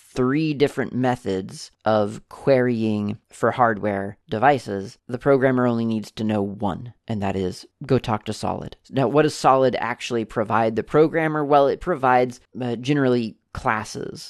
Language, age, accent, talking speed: English, 30-49, American, 150 wpm